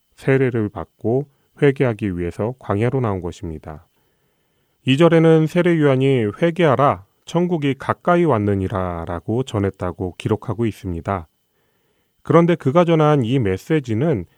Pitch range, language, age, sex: 95-150 Hz, Korean, 30-49, male